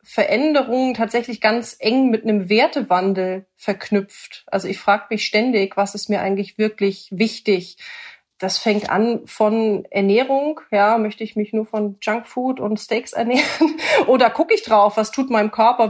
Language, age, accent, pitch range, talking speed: German, 30-49, German, 200-240 Hz, 160 wpm